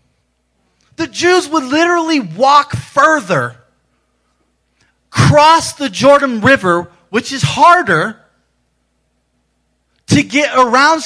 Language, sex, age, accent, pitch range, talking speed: English, male, 30-49, American, 100-145 Hz, 85 wpm